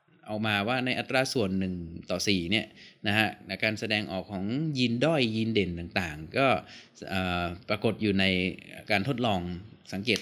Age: 20-39